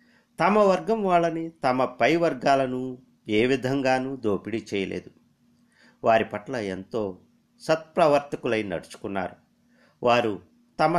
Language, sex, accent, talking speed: Telugu, male, native, 95 wpm